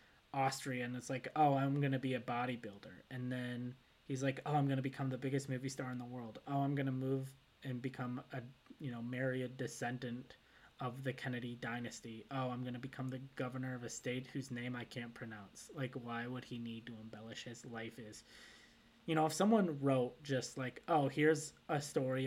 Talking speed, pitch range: 200 wpm, 115-135 Hz